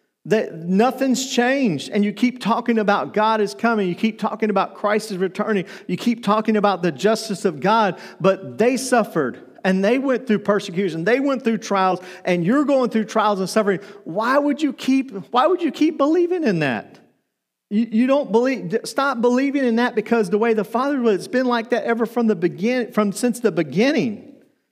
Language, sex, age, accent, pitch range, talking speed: English, male, 40-59, American, 185-230 Hz, 200 wpm